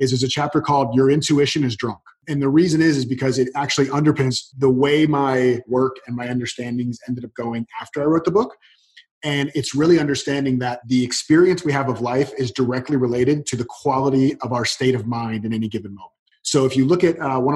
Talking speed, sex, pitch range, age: 225 wpm, male, 125-145 Hz, 30-49